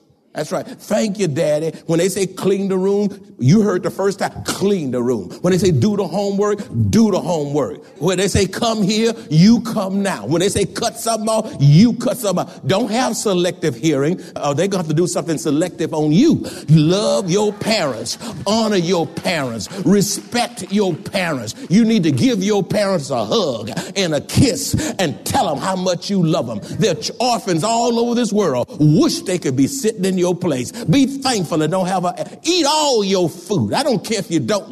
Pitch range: 175-235 Hz